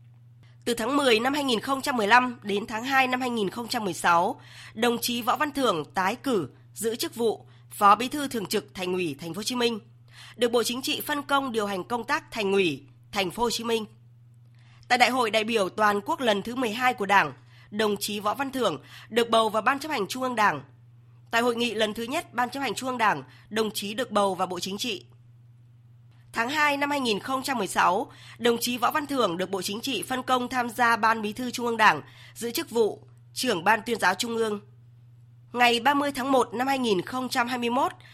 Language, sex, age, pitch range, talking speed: Vietnamese, female, 20-39, 180-250 Hz, 210 wpm